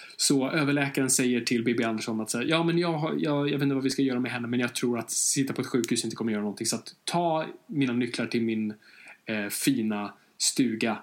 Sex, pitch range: male, 115-140 Hz